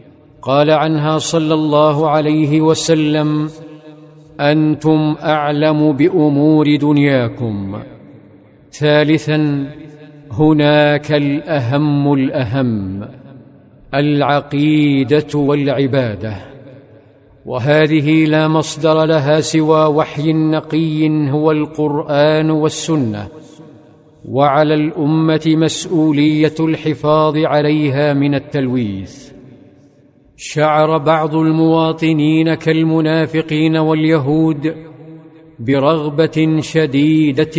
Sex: male